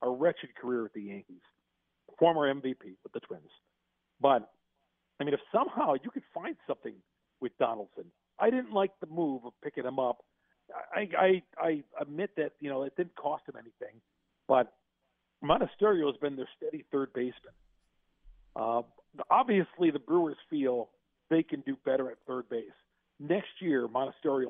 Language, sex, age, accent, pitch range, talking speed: English, male, 40-59, American, 125-155 Hz, 160 wpm